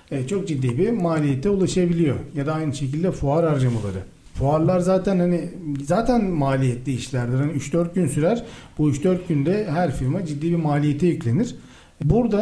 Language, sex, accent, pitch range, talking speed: Turkish, male, native, 140-195 Hz, 155 wpm